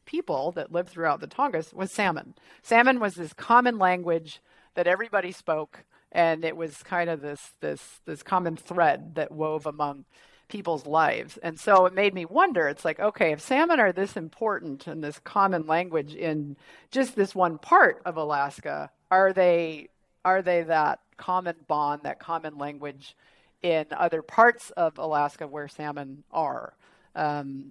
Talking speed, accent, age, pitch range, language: 160 wpm, American, 40-59, 150-195 Hz, English